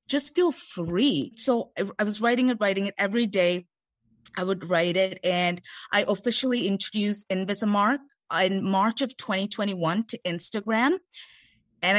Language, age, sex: English, 20-39, female